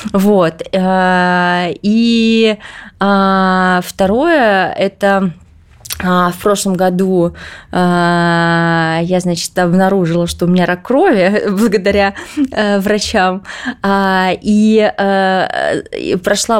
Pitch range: 185-210 Hz